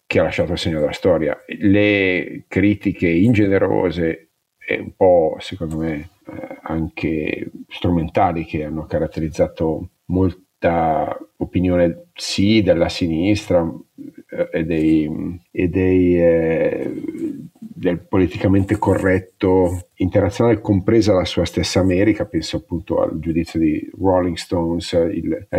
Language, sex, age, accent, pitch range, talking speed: Italian, male, 50-69, native, 85-95 Hz, 110 wpm